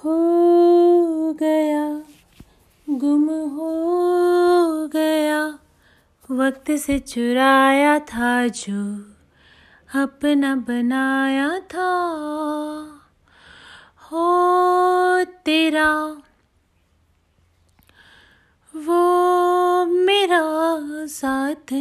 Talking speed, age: 50 wpm, 30-49